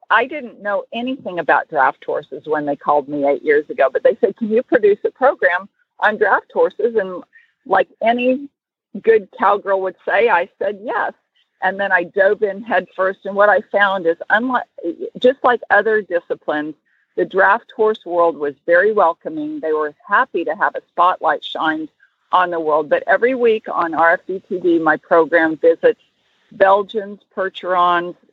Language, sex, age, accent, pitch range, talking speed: English, female, 50-69, American, 170-275 Hz, 165 wpm